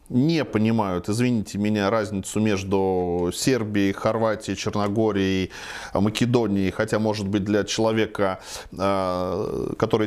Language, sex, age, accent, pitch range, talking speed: Russian, male, 20-39, native, 105-140 Hz, 95 wpm